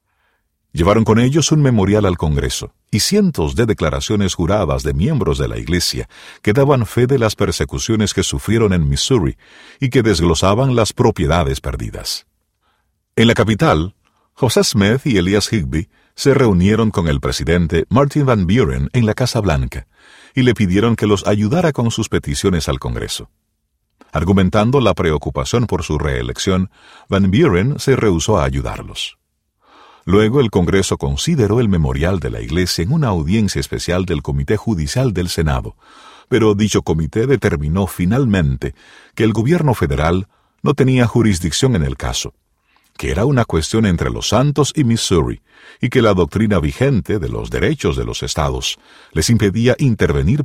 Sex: male